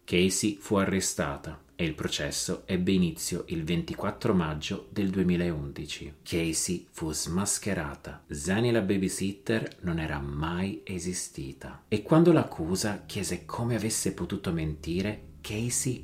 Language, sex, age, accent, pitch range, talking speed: Italian, male, 30-49, native, 85-105 Hz, 120 wpm